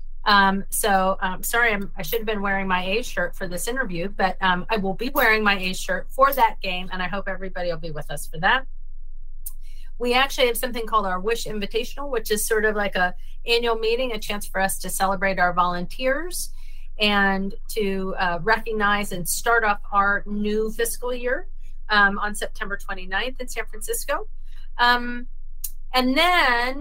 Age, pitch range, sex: 30-49, 185-235 Hz, female